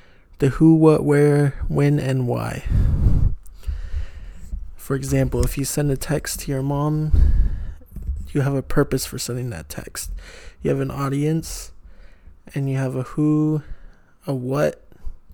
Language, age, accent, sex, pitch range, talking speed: English, 20-39, American, male, 120-145 Hz, 140 wpm